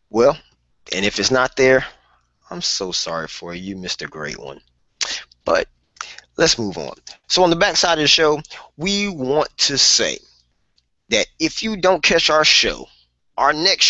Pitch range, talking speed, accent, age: 100-160 Hz, 170 wpm, American, 20-39